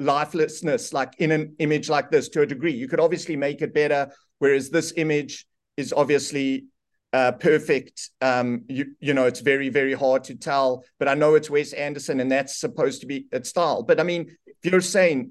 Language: English